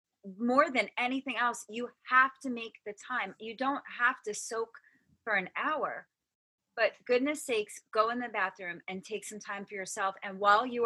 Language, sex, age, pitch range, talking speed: English, female, 30-49, 185-235 Hz, 190 wpm